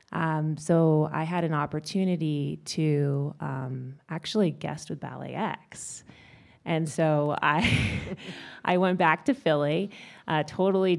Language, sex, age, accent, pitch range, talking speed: English, female, 20-39, American, 145-160 Hz, 125 wpm